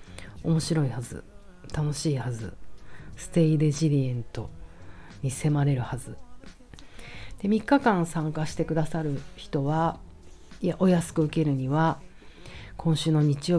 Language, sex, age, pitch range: Japanese, female, 40-59, 140-185 Hz